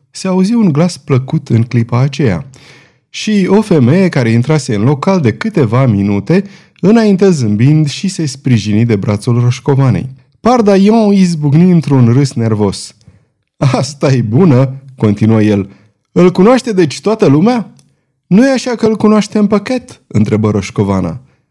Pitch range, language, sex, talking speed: 115-185 Hz, Romanian, male, 145 wpm